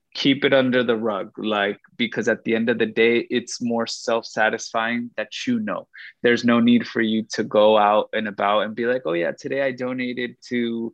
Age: 20-39